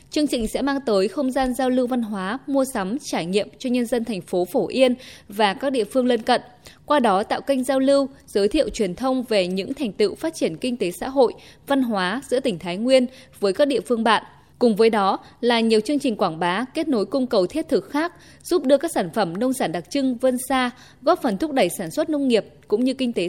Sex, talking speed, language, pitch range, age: female, 250 wpm, Vietnamese, 210-265 Hz, 10-29